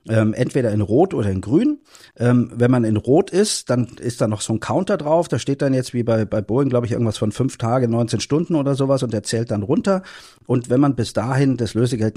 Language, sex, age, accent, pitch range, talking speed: German, male, 50-69, German, 110-140 Hz, 250 wpm